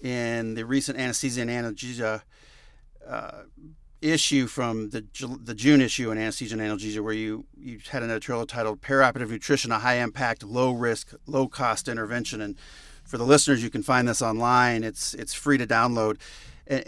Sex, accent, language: male, American, English